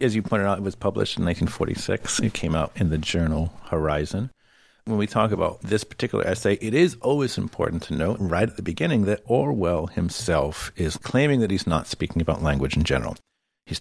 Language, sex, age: English, male, 50-69